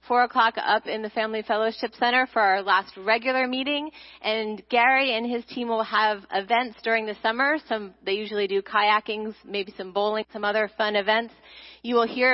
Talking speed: 190 wpm